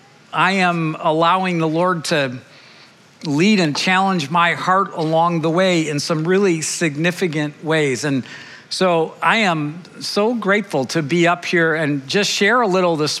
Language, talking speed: English, 160 wpm